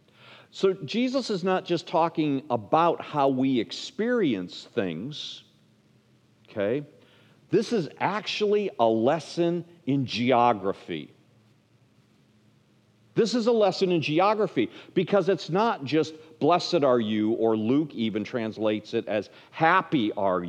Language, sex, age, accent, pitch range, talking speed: English, male, 50-69, American, 120-190 Hz, 115 wpm